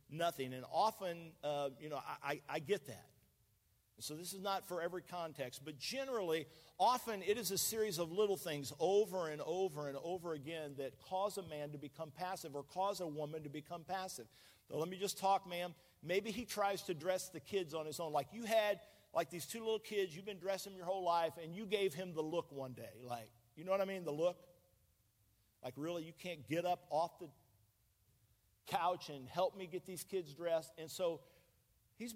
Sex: male